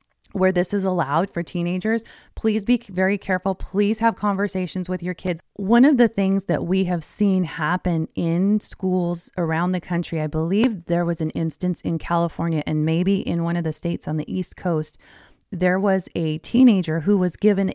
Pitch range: 150-185 Hz